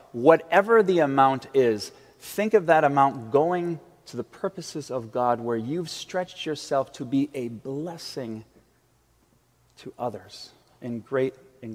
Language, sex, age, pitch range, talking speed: English, male, 40-59, 130-185 Hz, 140 wpm